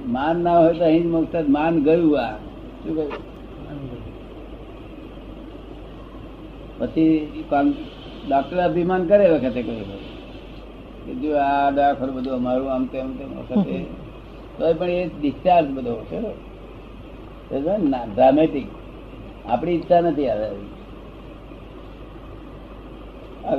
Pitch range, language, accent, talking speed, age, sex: 135-165 Hz, Gujarati, native, 45 wpm, 60-79, male